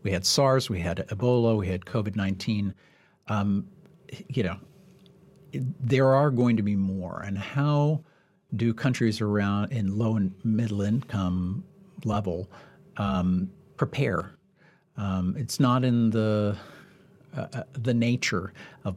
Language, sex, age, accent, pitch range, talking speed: English, male, 50-69, American, 95-120 Hz, 125 wpm